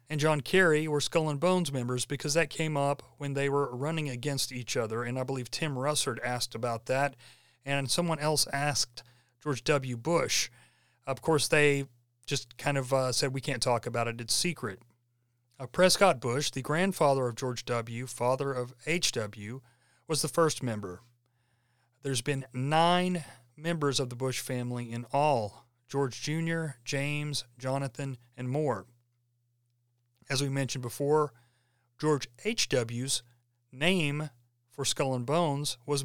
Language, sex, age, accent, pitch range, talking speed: English, male, 40-59, American, 120-150 Hz, 155 wpm